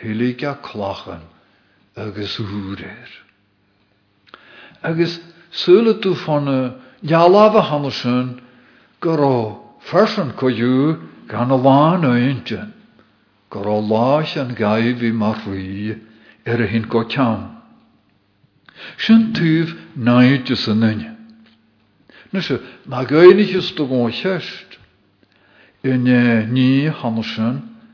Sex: male